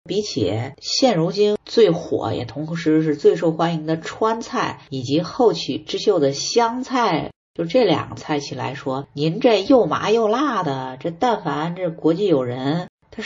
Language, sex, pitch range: Chinese, female, 135-185 Hz